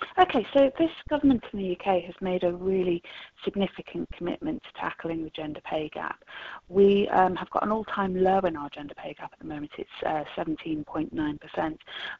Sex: female